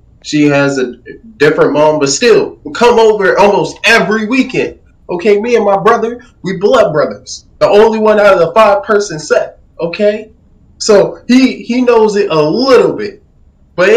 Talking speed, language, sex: 170 wpm, English, male